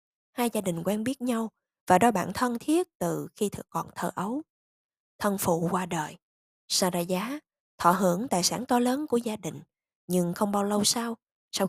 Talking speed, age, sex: 185 wpm, 20-39, female